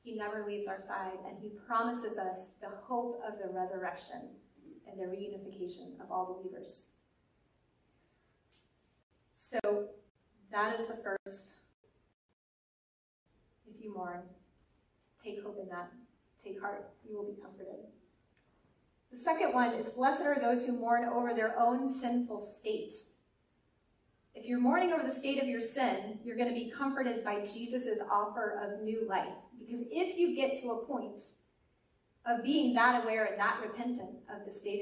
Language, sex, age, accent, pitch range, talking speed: English, female, 30-49, American, 200-245 Hz, 155 wpm